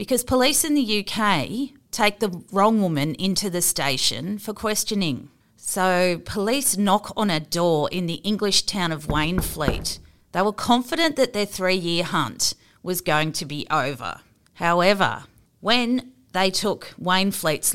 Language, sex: English, female